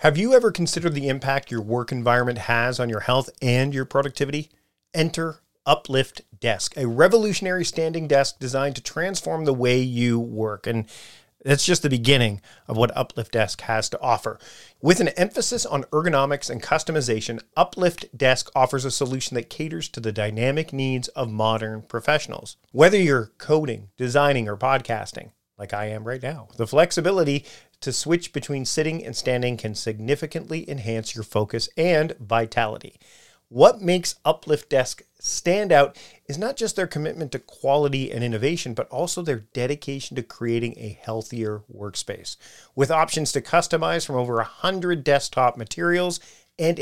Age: 40-59